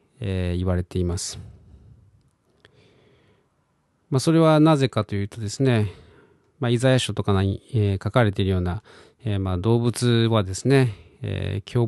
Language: Japanese